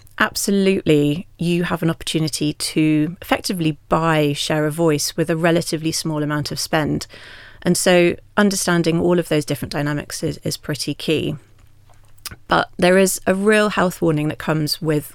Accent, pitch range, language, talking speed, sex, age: British, 150-175 Hz, English, 160 wpm, female, 30-49